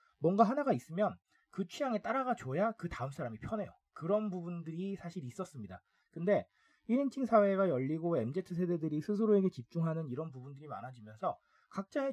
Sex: male